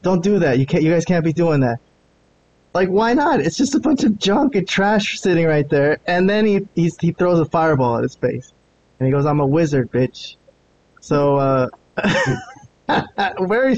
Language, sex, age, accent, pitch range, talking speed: English, male, 20-39, American, 130-170 Hz, 200 wpm